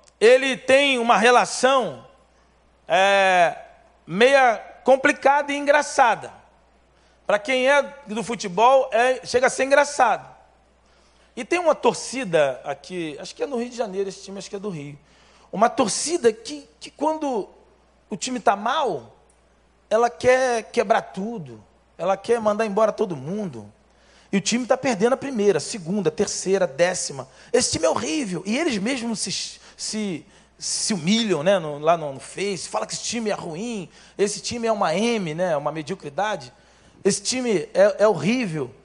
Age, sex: 40-59, male